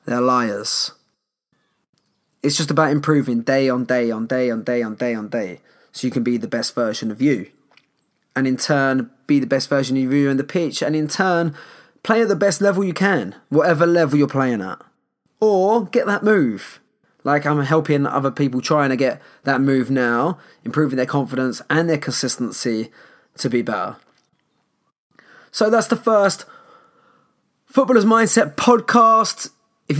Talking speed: 170 wpm